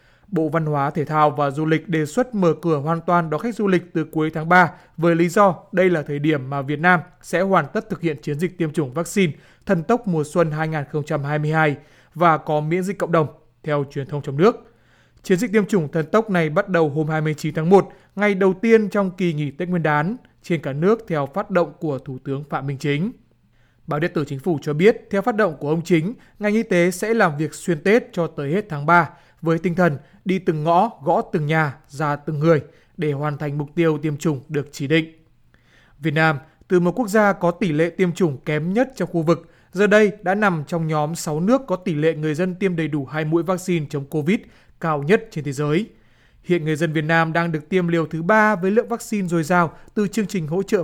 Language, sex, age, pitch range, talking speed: Vietnamese, male, 20-39, 155-185 Hz, 240 wpm